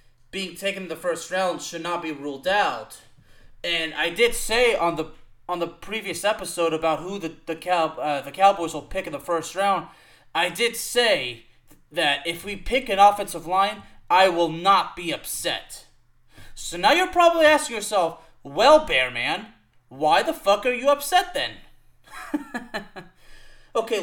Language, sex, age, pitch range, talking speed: English, male, 20-39, 160-205 Hz, 165 wpm